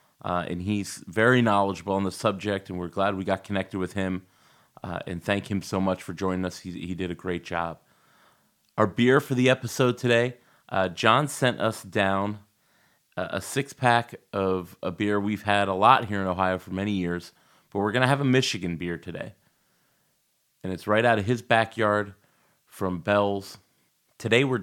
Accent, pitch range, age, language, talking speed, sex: American, 95-110 Hz, 30-49, English, 190 wpm, male